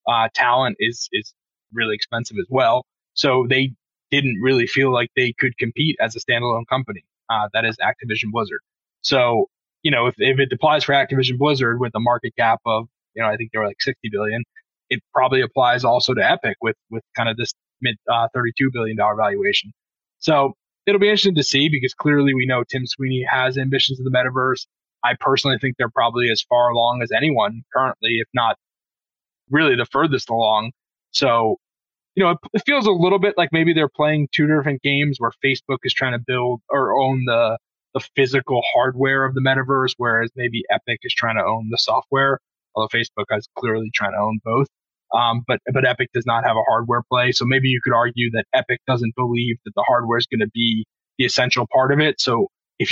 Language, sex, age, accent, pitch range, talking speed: English, male, 20-39, American, 115-135 Hz, 205 wpm